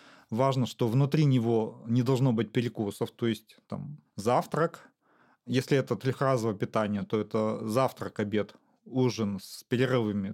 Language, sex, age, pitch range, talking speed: Russian, male, 30-49, 105-125 Hz, 135 wpm